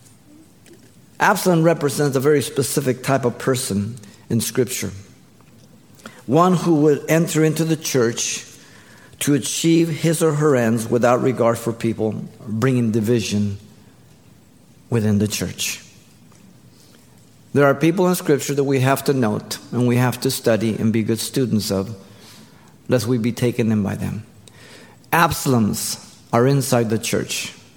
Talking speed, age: 140 wpm, 50-69